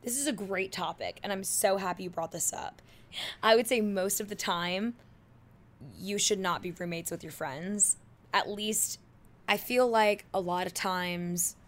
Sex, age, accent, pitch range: female, 10-29, American, 175-210 Hz